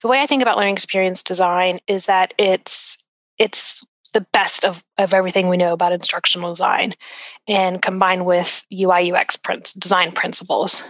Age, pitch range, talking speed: 20-39, 185-225 Hz, 160 wpm